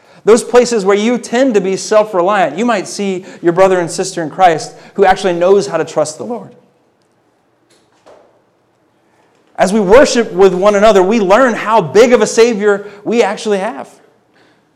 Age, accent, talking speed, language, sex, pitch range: 30-49, American, 165 wpm, English, male, 175-220 Hz